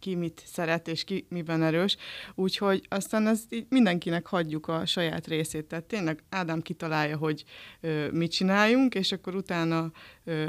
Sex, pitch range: female, 165-190 Hz